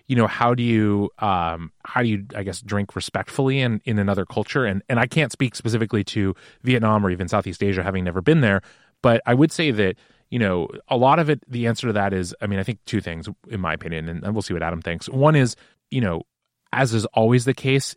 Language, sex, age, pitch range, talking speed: English, male, 30-49, 95-120 Hz, 245 wpm